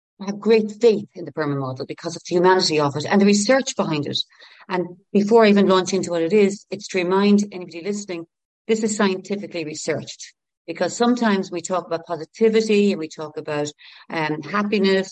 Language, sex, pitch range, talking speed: English, female, 170-225 Hz, 190 wpm